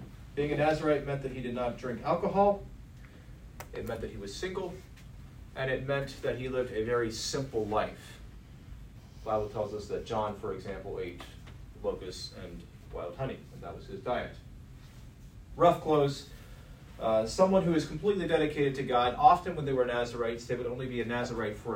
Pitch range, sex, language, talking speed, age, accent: 115-155 Hz, male, English, 180 wpm, 30-49, American